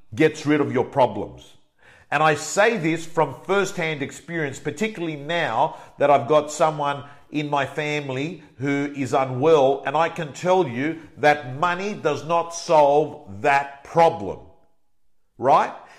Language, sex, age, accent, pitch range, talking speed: English, male, 50-69, Australian, 145-175 Hz, 140 wpm